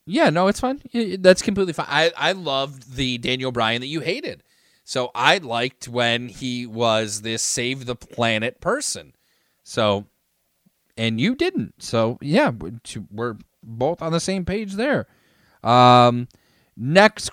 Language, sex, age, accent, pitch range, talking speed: English, male, 30-49, American, 110-150 Hz, 145 wpm